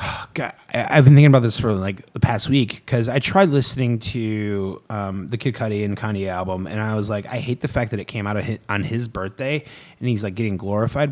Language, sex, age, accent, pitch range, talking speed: English, male, 20-39, American, 100-125 Hz, 245 wpm